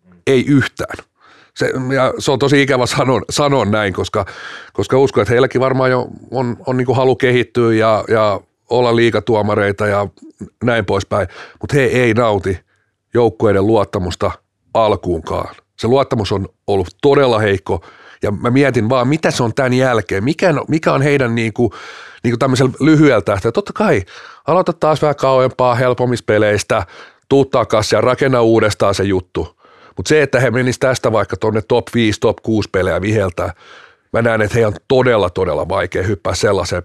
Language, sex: Finnish, male